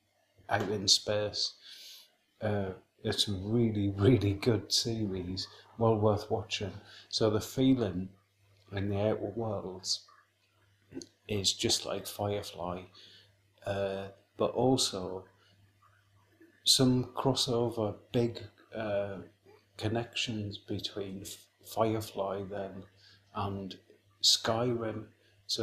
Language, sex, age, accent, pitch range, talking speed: English, male, 30-49, British, 100-115 Hz, 90 wpm